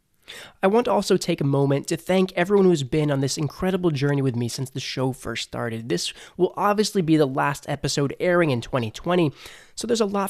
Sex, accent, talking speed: male, American, 215 wpm